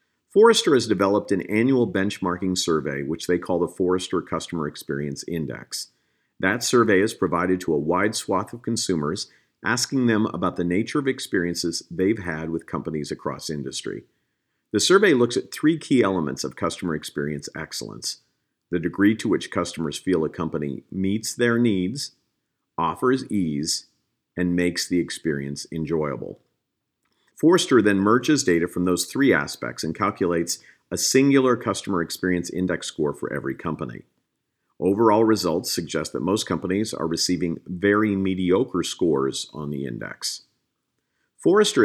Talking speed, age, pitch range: 145 wpm, 50-69, 80-105 Hz